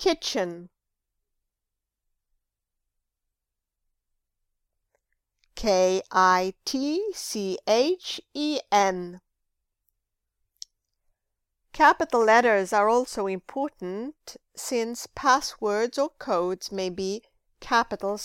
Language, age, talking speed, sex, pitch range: English, 50-69, 45 wpm, female, 170-225 Hz